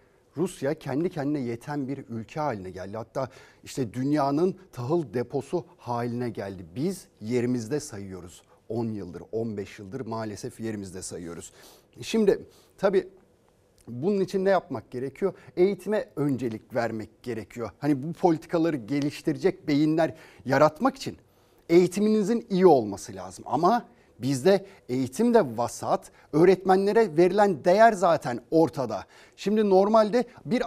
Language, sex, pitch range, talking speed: Turkish, male, 120-195 Hz, 115 wpm